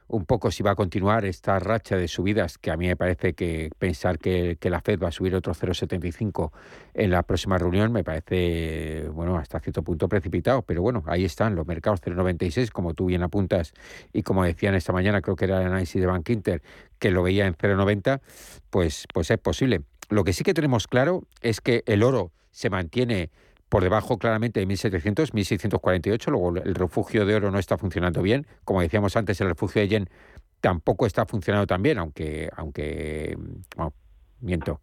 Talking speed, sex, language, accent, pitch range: 195 wpm, male, Spanish, Spanish, 85-105 Hz